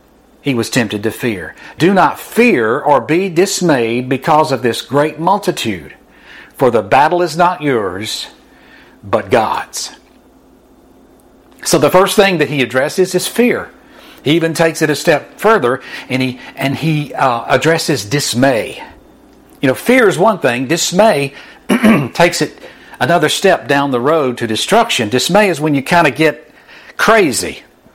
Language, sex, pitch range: English, male, 135-185 Hz